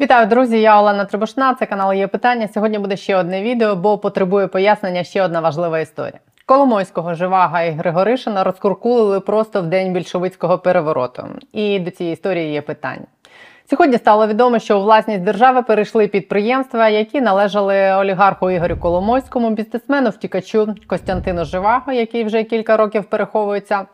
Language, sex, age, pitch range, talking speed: Ukrainian, female, 30-49, 180-220 Hz, 150 wpm